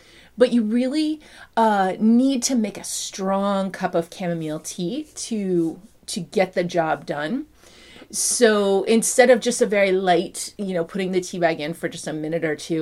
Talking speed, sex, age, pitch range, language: 185 wpm, female, 30-49, 170-230 Hz, English